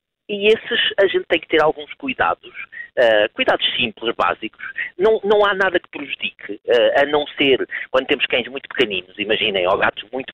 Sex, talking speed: male, 175 wpm